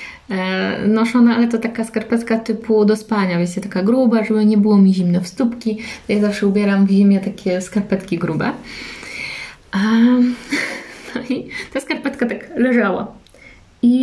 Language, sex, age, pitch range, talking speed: Polish, female, 20-39, 205-245 Hz, 145 wpm